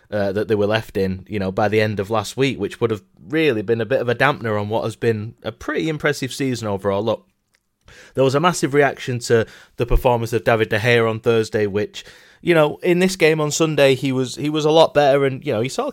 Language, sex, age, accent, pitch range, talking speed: English, male, 20-39, British, 110-150 Hz, 255 wpm